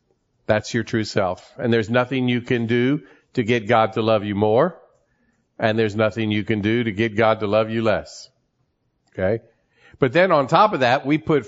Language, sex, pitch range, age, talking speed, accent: English, male, 100-120 Hz, 50-69, 205 wpm, American